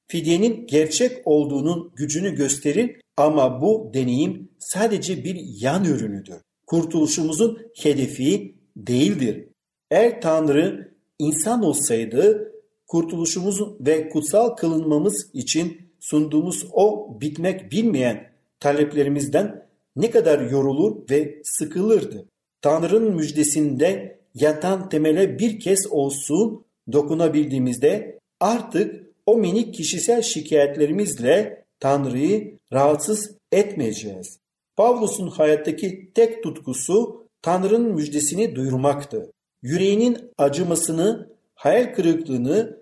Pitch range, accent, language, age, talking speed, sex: 150-215 Hz, native, Turkish, 50-69, 85 wpm, male